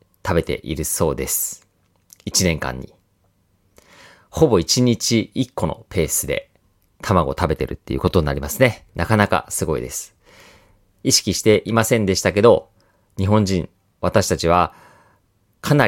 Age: 40-59